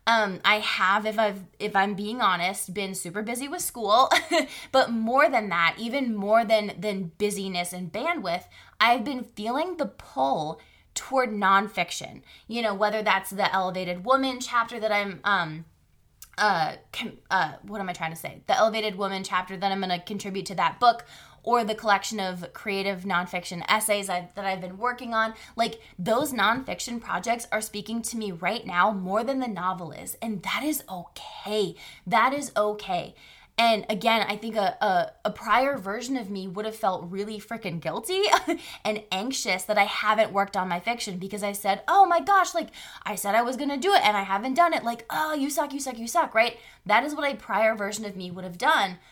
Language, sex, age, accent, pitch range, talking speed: English, female, 20-39, American, 195-240 Hz, 200 wpm